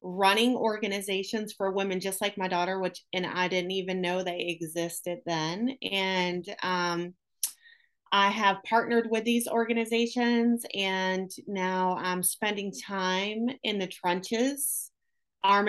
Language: English